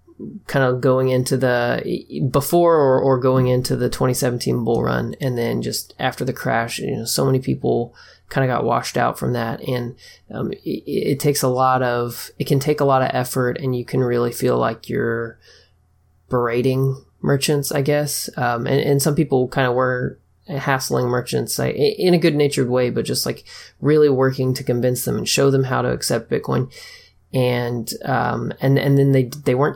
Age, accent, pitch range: 30-49, American, 120-135 Hz